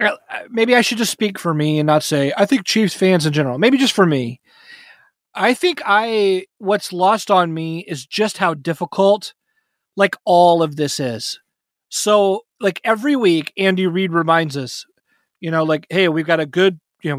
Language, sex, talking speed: English, male, 190 wpm